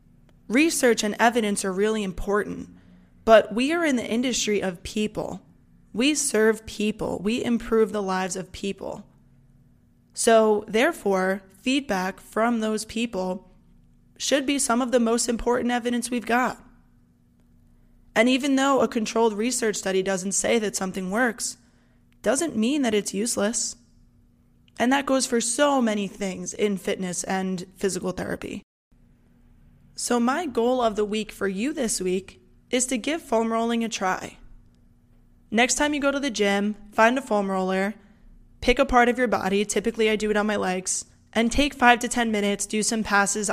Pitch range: 200-245 Hz